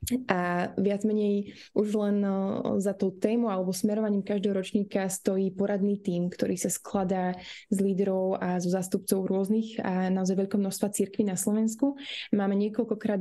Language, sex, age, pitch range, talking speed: Slovak, female, 20-39, 190-215 Hz, 150 wpm